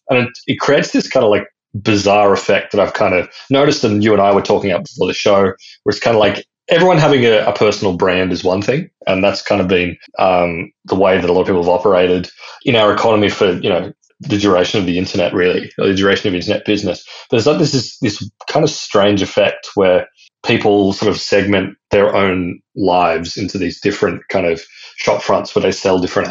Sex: male